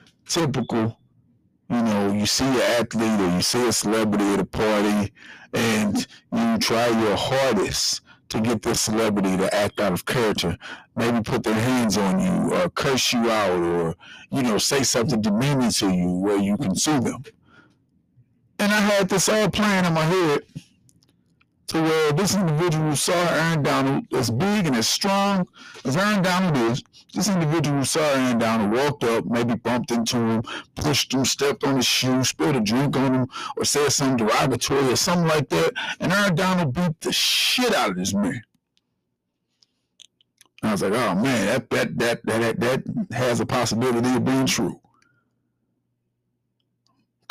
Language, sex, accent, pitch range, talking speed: English, male, American, 110-165 Hz, 175 wpm